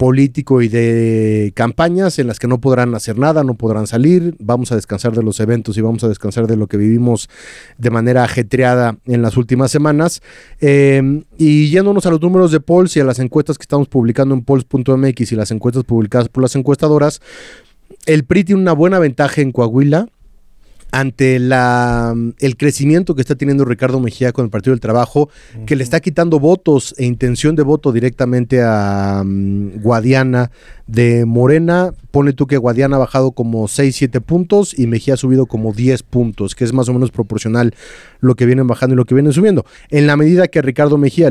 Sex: male